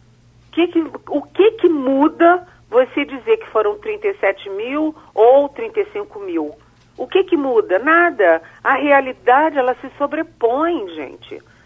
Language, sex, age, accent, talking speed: Portuguese, female, 50-69, Brazilian, 135 wpm